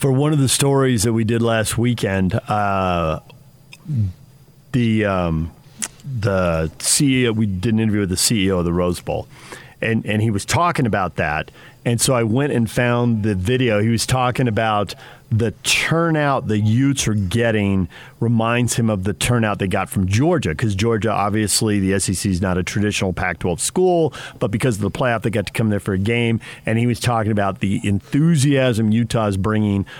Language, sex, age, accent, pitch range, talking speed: English, male, 40-59, American, 100-125 Hz, 185 wpm